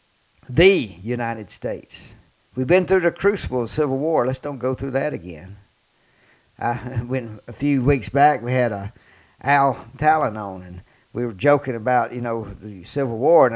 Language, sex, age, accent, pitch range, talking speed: English, male, 50-69, American, 115-155 Hz, 180 wpm